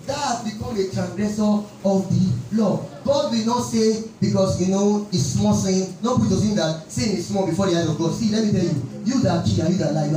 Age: 30-49